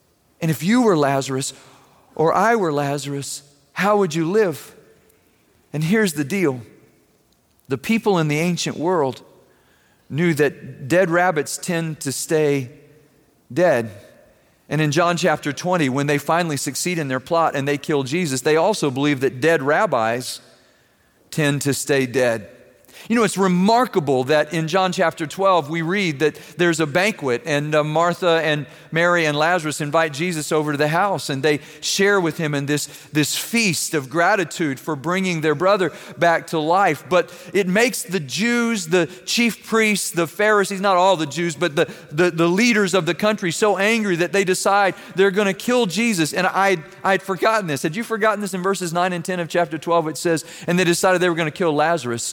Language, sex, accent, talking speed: English, male, American, 185 wpm